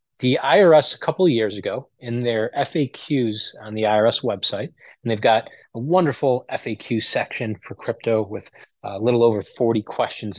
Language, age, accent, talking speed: English, 30-49, American, 170 wpm